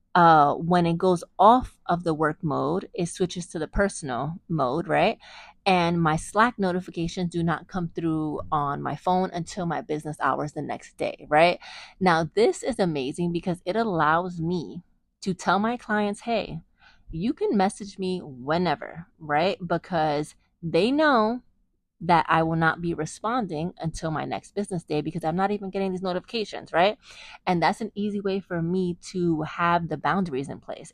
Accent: American